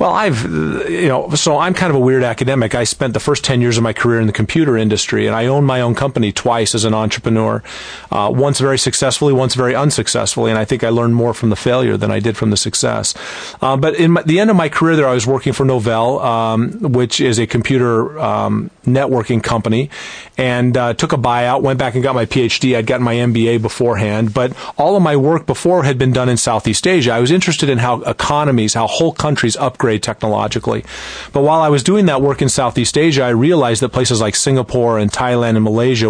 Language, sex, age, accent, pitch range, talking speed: English, male, 40-59, American, 115-135 Hz, 230 wpm